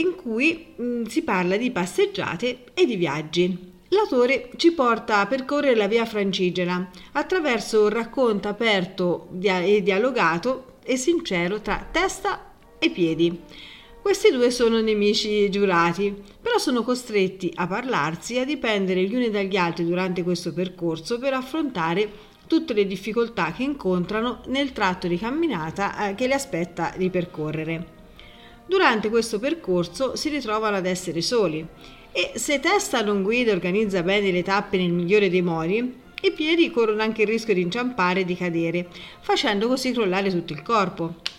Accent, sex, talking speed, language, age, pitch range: native, female, 150 wpm, Italian, 40-59, 180-245 Hz